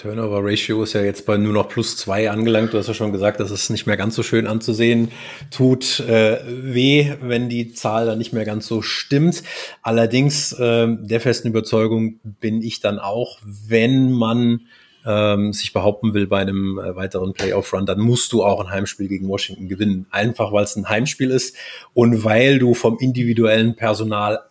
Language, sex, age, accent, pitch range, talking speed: German, male, 30-49, German, 105-130 Hz, 185 wpm